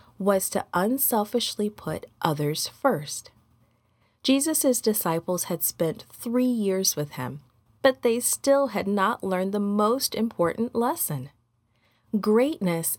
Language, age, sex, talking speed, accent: English, 30-49, female, 115 wpm, American